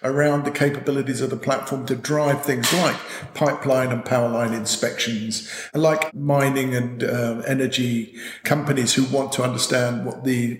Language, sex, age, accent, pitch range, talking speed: English, male, 50-69, British, 125-150 Hz, 155 wpm